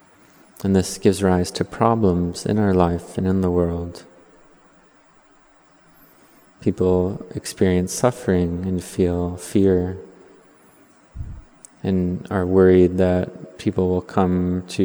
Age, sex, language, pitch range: 20-39, male, English, 90-95 Hz